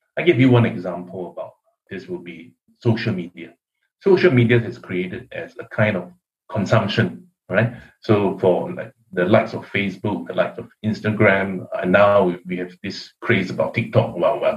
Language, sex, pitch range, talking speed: English, male, 95-125 Hz, 170 wpm